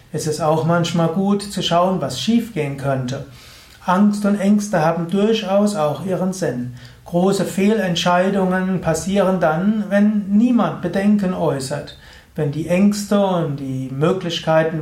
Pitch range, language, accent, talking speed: 155-195 Hz, German, German, 135 wpm